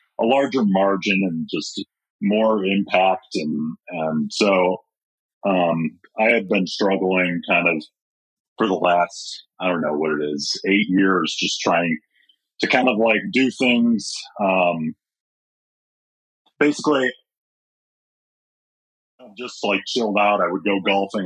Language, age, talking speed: English, 40-59, 135 wpm